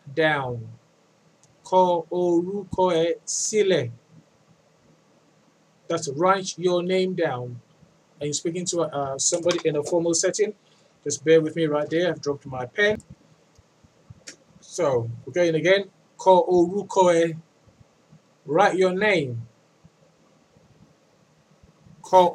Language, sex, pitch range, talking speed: English, male, 155-185 Hz, 110 wpm